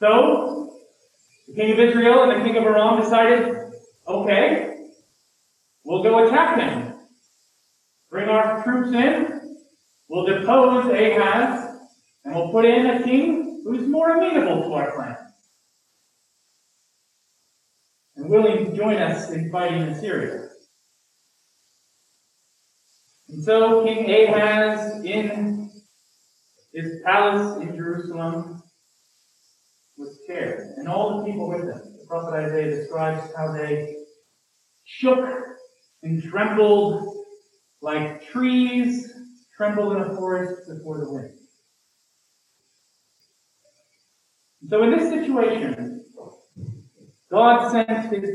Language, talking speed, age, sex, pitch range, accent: English, 105 wpm, 30-49, male, 190-245 Hz, American